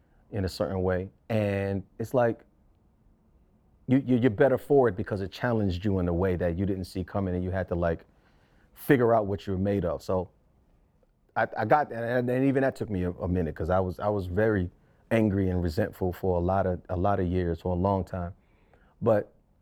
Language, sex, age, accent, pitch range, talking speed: English, male, 30-49, American, 90-110 Hz, 220 wpm